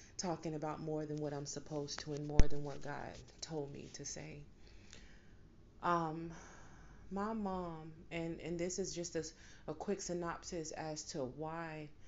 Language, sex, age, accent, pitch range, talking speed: English, female, 30-49, American, 145-175 Hz, 160 wpm